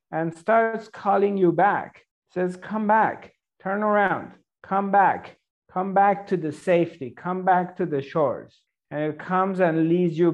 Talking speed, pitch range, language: 165 wpm, 155-185 Hz, English